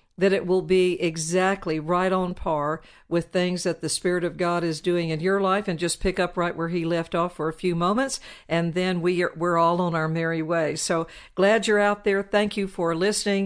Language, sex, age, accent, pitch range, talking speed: English, female, 50-69, American, 175-205 Hz, 225 wpm